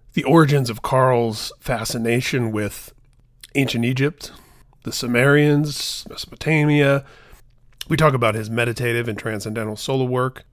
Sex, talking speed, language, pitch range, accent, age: male, 115 wpm, English, 120-145 Hz, American, 30-49